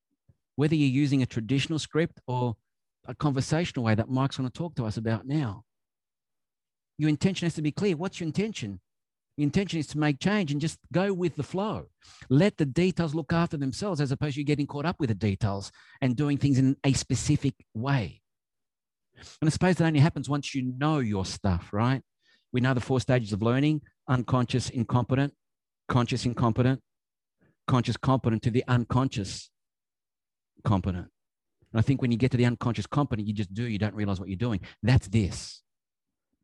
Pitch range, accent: 110-155 Hz, Australian